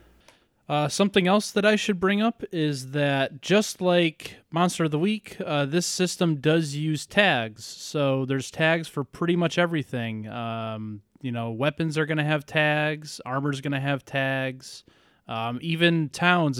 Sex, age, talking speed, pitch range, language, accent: male, 20-39, 170 wpm, 120-150 Hz, English, American